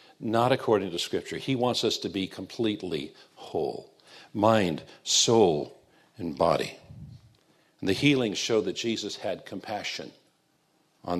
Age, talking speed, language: 60-79, 130 wpm, English